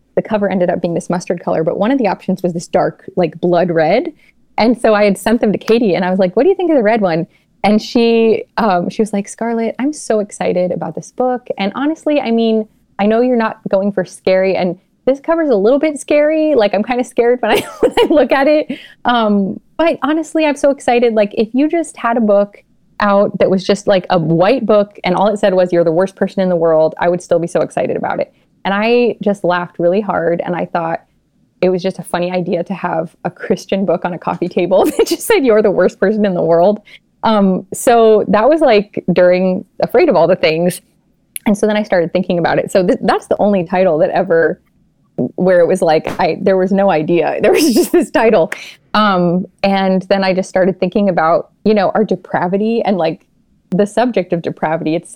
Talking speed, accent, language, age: 235 wpm, American, English, 20-39